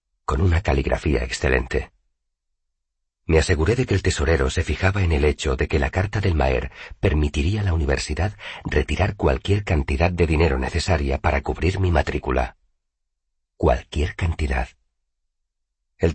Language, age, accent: Spanish, 40-59, Spanish